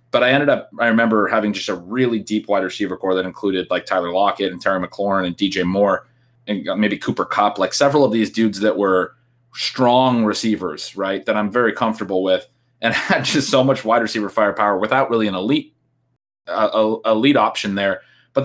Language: English